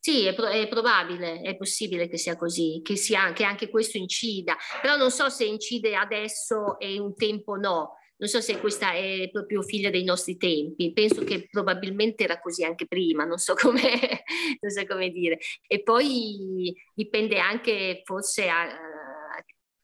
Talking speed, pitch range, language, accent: 170 wpm, 175-215 Hz, Italian, native